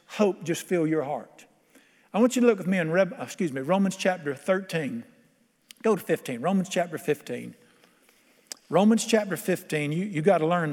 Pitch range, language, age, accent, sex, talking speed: 165-215 Hz, English, 50-69, American, male, 170 wpm